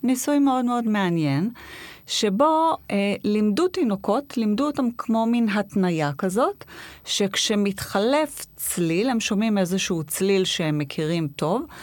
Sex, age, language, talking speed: female, 30-49, Hebrew, 115 wpm